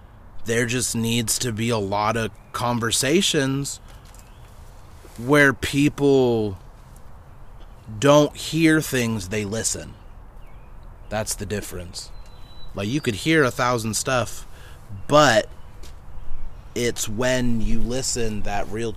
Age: 30-49